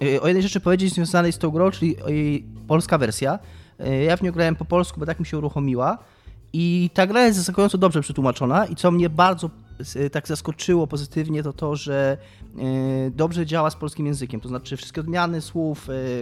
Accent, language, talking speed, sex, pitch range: native, Polish, 190 wpm, male, 130-170 Hz